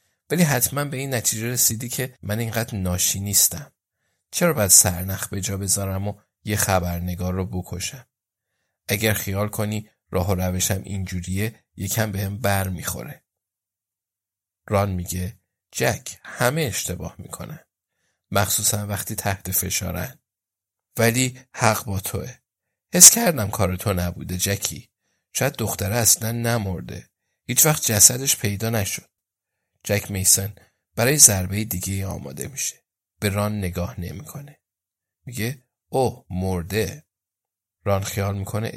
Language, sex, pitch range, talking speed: Persian, male, 95-115 Hz, 125 wpm